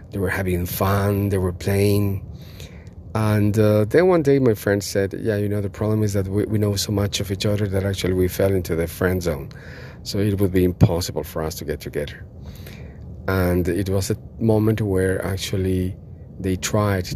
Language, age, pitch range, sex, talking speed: English, 40-59, 90-105 Hz, male, 200 wpm